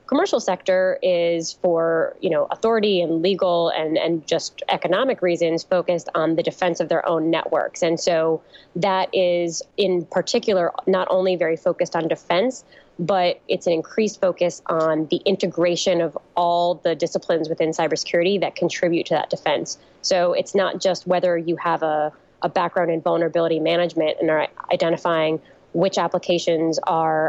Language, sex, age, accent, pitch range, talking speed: English, female, 20-39, American, 165-180 Hz, 160 wpm